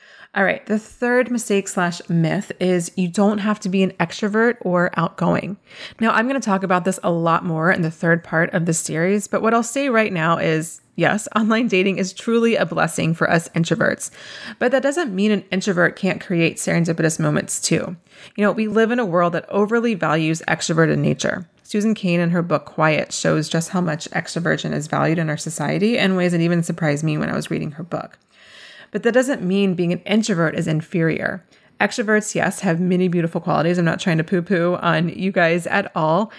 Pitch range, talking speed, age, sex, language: 170-210 Hz, 210 wpm, 20-39, female, English